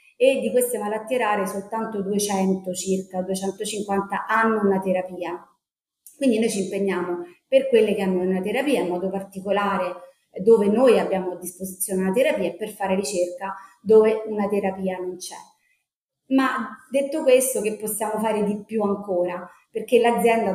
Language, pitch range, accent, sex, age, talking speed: Italian, 190-220 Hz, native, female, 30-49, 150 wpm